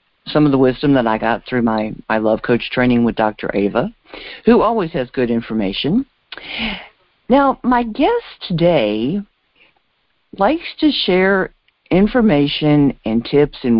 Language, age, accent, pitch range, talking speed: English, 50-69, American, 130-220 Hz, 140 wpm